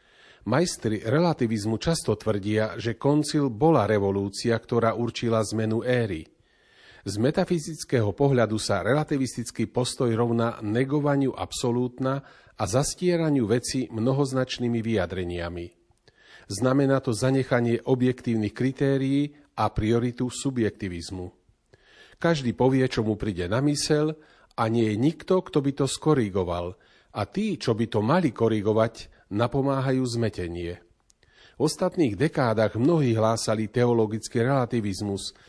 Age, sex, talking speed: 40-59, male, 110 wpm